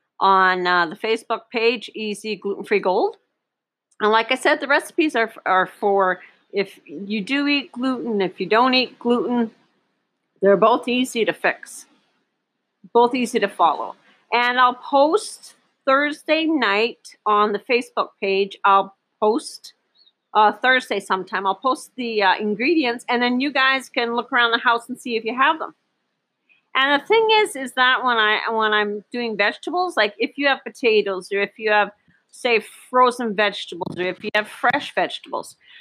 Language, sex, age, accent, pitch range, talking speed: English, female, 40-59, American, 205-255 Hz, 170 wpm